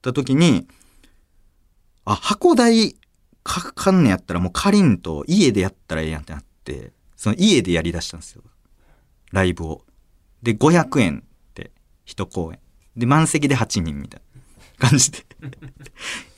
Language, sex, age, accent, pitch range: Japanese, male, 40-59, native, 85-130 Hz